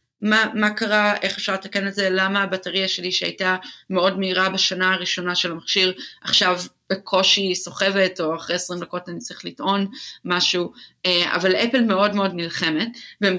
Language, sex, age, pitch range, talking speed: Hebrew, female, 30-49, 175-205 Hz, 155 wpm